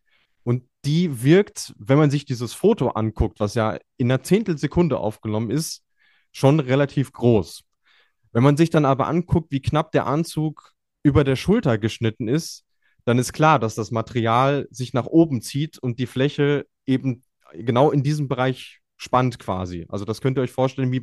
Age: 20-39